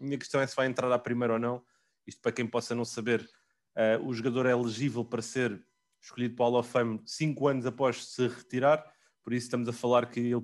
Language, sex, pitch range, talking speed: English, male, 110-135 Hz, 240 wpm